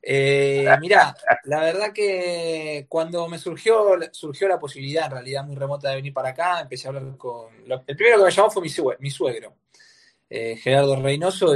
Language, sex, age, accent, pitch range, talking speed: Spanish, male, 20-39, Argentinian, 130-165 Hz, 185 wpm